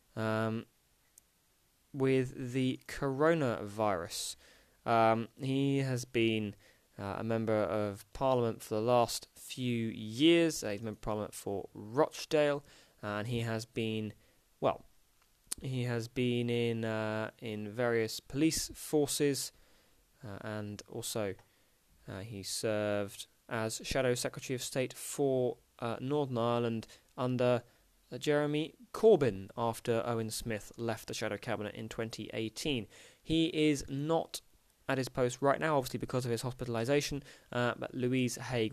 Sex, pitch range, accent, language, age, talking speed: male, 110-135 Hz, British, English, 20-39, 130 wpm